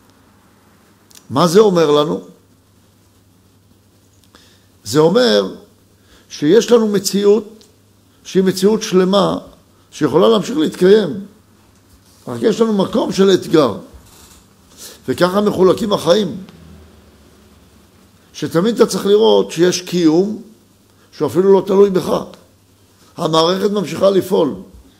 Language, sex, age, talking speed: Hebrew, male, 60-79, 90 wpm